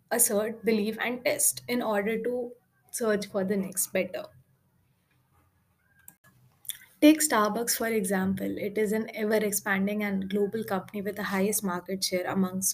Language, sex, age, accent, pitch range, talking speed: English, female, 20-39, Indian, 205-265 Hz, 140 wpm